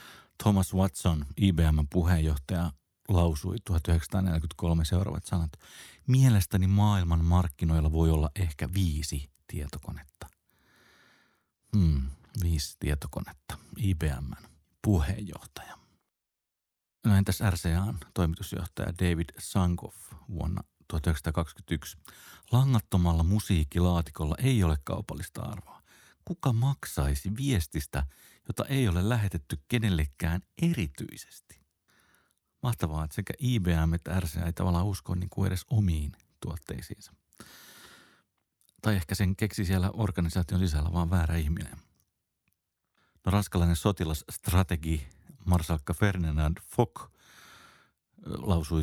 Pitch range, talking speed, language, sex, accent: 80-100 Hz, 90 wpm, Finnish, male, native